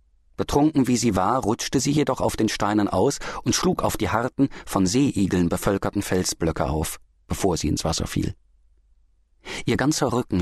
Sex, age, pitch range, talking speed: male, 40-59, 75-110 Hz, 165 wpm